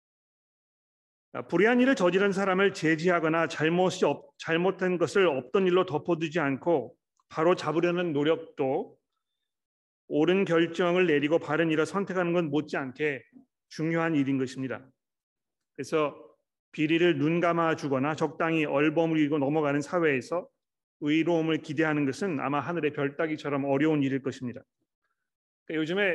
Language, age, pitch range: Korean, 40-59, 150-180 Hz